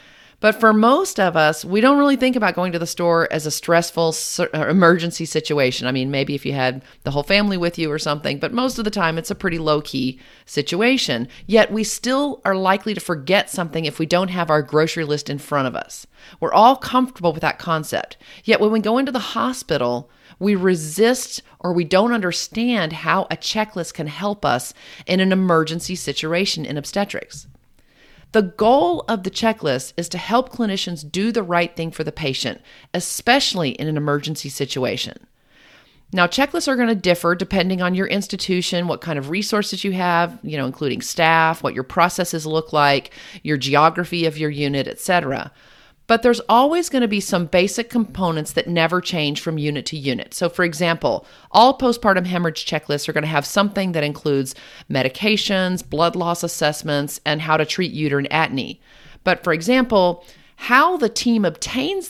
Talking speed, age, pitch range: 185 wpm, 40-59, 150-205 Hz